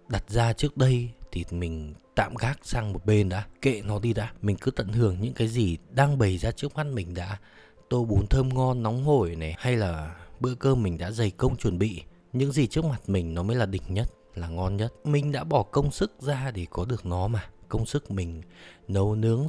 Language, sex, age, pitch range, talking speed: Vietnamese, male, 20-39, 95-125 Hz, 235 wpm